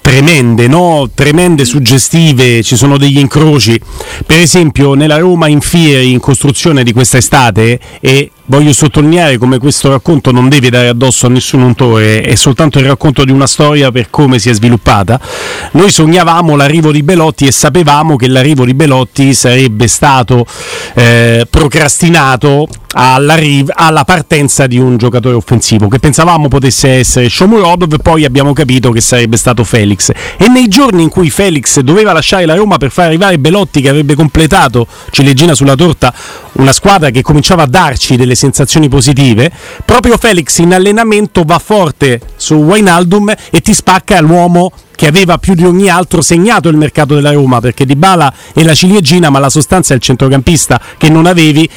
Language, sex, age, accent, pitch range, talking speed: Italian, male, 40-59, native, 130-170 Hz, 165 wpm